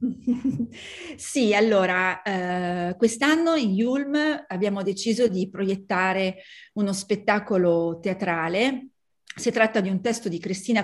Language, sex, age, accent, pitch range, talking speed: Italian, female, 30-49, native, 180-230 Hz, 110 wpm